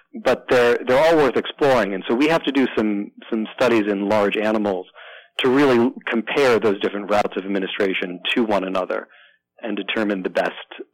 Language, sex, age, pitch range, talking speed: English, male, 40-59, 100-115 Hz, 180 wpm